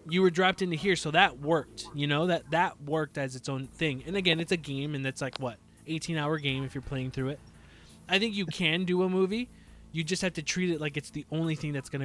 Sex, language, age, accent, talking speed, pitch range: male, English, 20-39, American, 265 wpm, 140-185 Hz